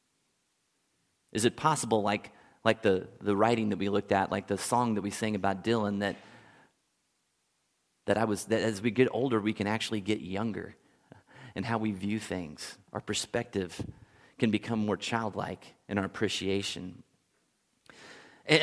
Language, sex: English, male